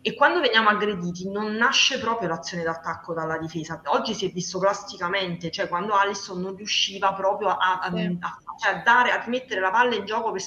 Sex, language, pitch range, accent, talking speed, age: female, Italian, 175-210 Hz, native, 195 wpm, 20-39